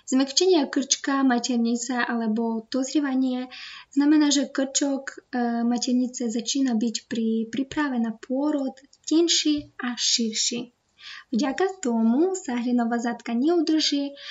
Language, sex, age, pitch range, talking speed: Slovak, female, 20-39, 235-280 Hz, 100 wpm